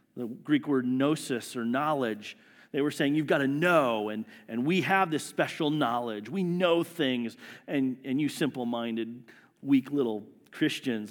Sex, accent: male, American